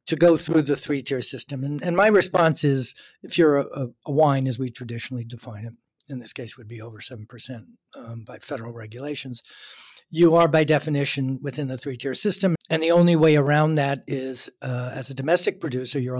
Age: 60-79